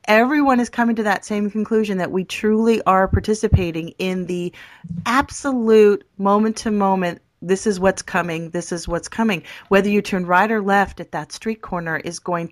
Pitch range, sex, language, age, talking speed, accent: 170-220 Hz, female, English, 40-59, 180 wpm, American